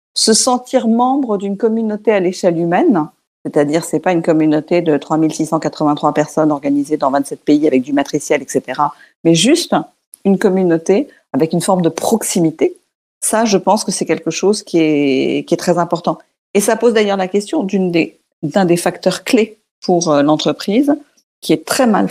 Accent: French